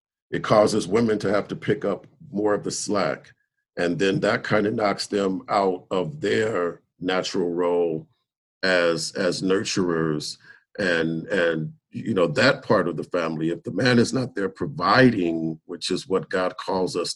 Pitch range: 85-125 Hz